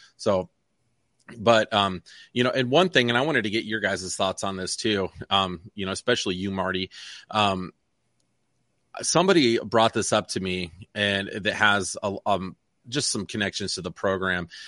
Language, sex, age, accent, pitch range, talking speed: English, male, 30-49, American, 100-120 Hz, 170 wpm